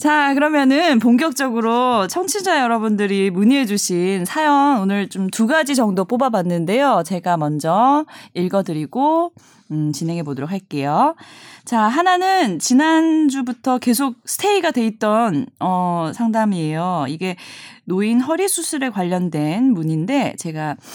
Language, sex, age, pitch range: Korean, female, 20-39, 185-275 Hz